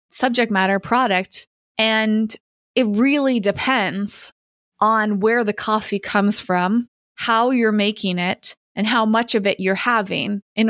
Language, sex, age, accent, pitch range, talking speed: English, female, 20-39, American, 185-215 Hz, 140 wpm